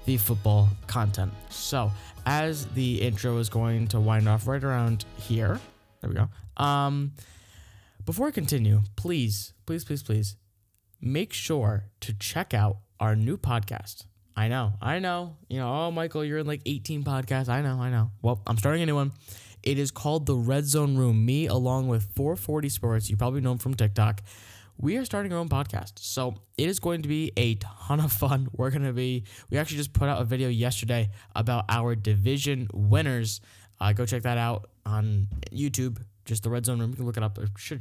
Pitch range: 105-135 Hz